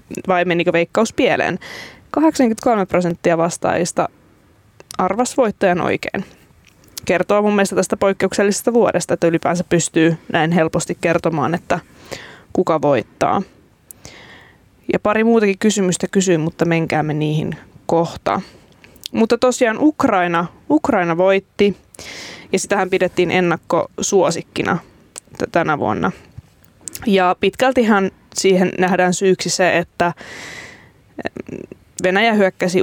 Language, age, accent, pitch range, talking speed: Finnish, 20-39, native, 170-195 Hz, 95 wpm